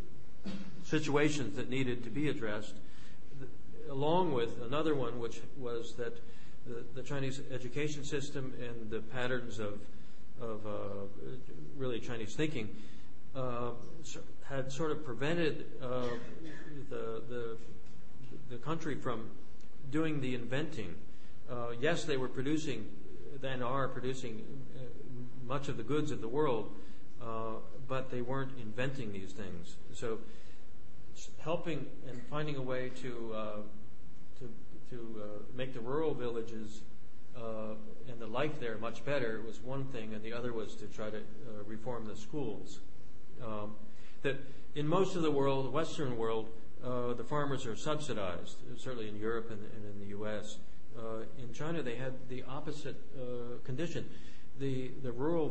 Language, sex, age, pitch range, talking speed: English, male, 50-69, 110-140 Hz, 145 wpm